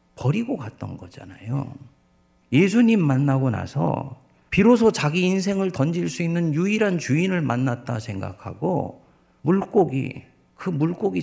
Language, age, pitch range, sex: Korean, 50-69, 105-170 Hz, male